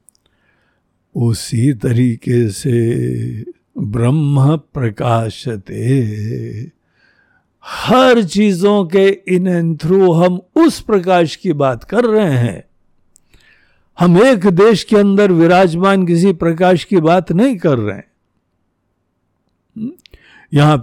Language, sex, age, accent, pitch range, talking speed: Hindi, male, 60-79, native, 115-175 Hz, 100 wpm